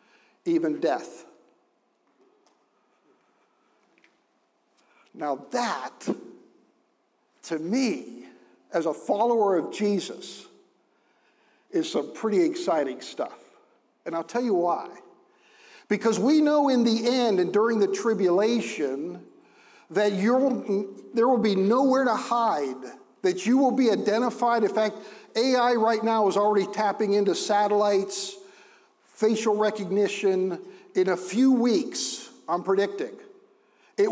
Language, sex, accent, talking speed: English, male, American, 110 wpm